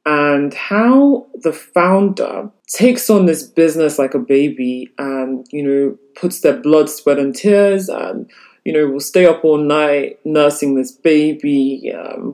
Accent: British